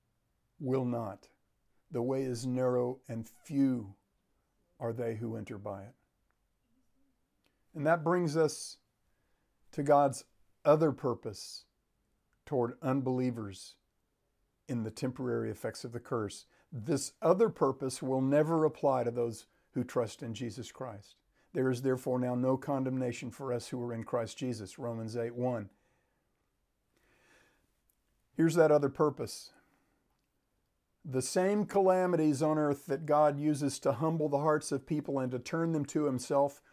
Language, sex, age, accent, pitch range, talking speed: English, male, 50-69, American, 120-150 Hz, 135 wpm